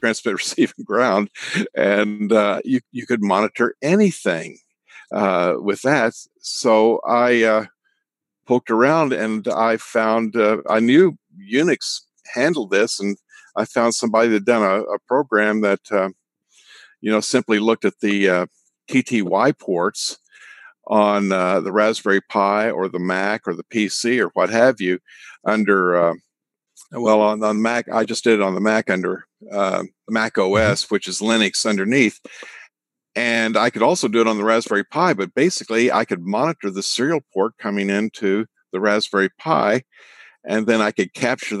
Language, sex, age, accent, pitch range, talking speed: English, male, 50-69, American, 100-115 Hz, 160 wpm